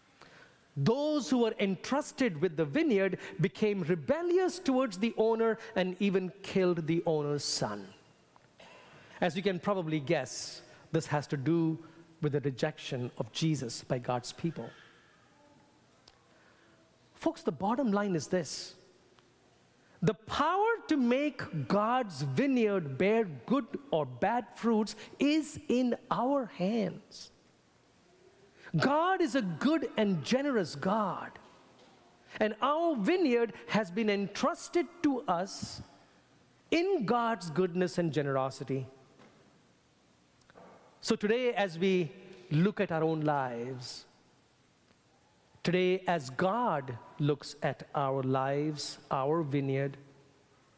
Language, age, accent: English, 50-69, Indian